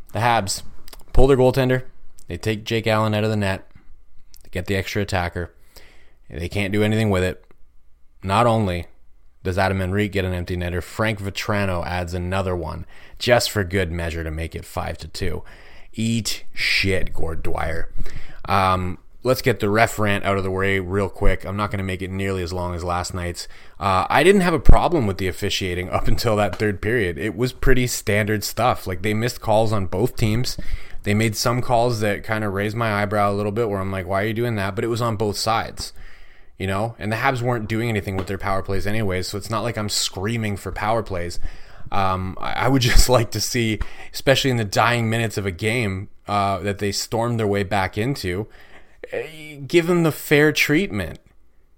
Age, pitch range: 30-49, 95-115 Hz